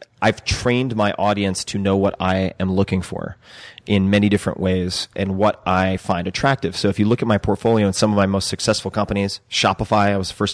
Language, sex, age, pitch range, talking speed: English, male, 30-49, 95-105 Hz, 220 wpm